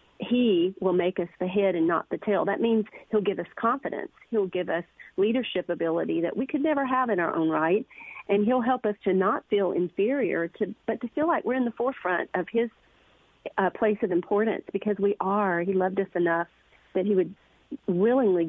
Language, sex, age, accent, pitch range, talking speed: English, female, 40-59, American, 175-220 Hz, 210 wpm